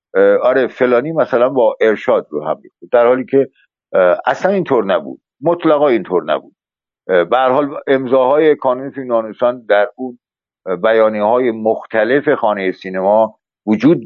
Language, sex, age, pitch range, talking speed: Persian, male, 60-79, 110-170 Hz, 125 wpm